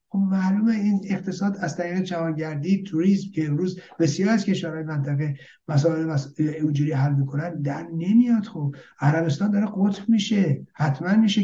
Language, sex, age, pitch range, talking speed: Persian, male, 60-79, 160-205 Hz, 140 wpm